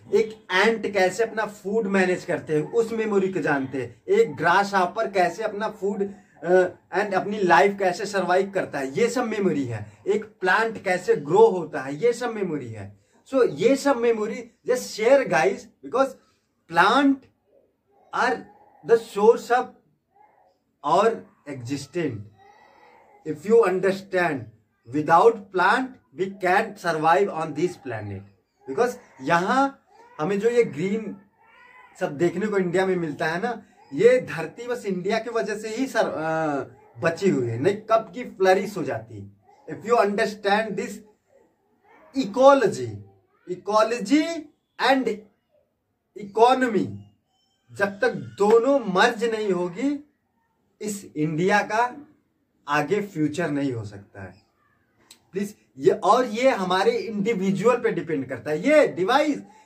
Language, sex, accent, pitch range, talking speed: Hindi, male, native, 165-235 Hz, 135 wpm